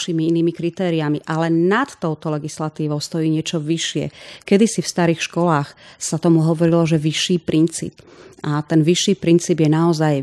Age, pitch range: 30-49, 155-180 Hz